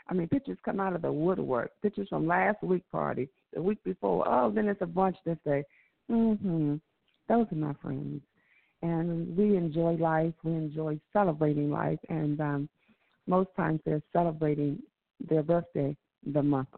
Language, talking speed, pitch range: English, 165 wpm, 160-195 Hz